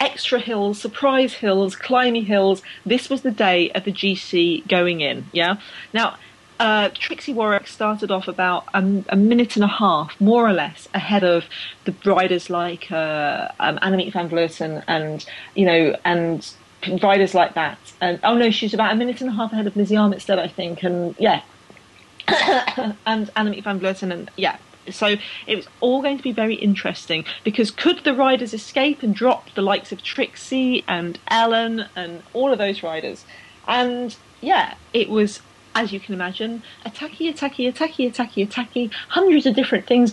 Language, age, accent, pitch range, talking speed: English, 40-59, British, 185-245 Hz, 175 wpm